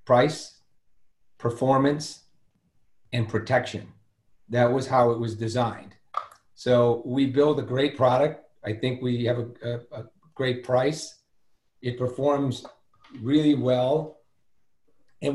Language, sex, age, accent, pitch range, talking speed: English, male, 40-59, American, 115-140 Hz, 115 wpm